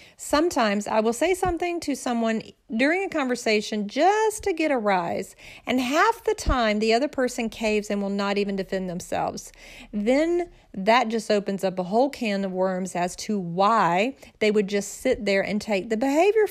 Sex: female